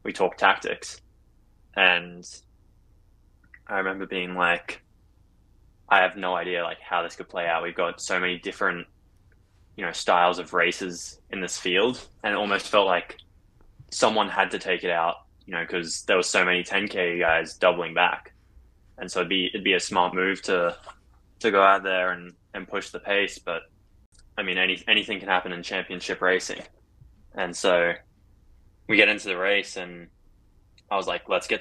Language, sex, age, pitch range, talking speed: English, male, 10-29, 90-100 Hz, 180 wpm